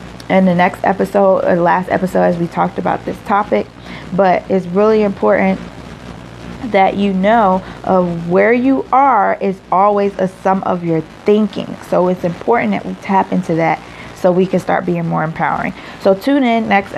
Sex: female